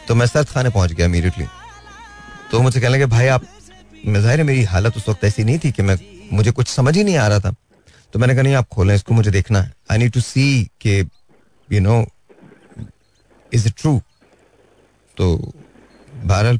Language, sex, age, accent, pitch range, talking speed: Hindi, male, 30-49, native, 95-120 Hz, 200 wpm